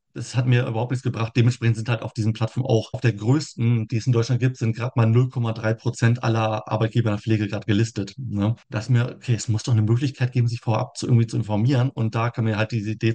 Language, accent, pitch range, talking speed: German, German, 115-140 Hz, 255 wpm